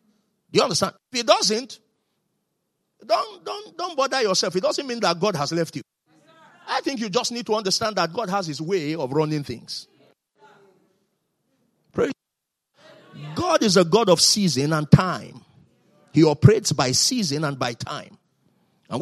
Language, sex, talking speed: English, male, 160 wpm